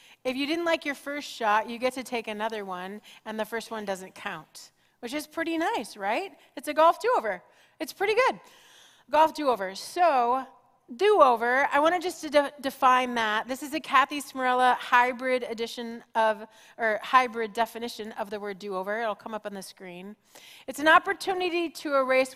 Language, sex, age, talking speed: English, female, 30-49, 170 wpm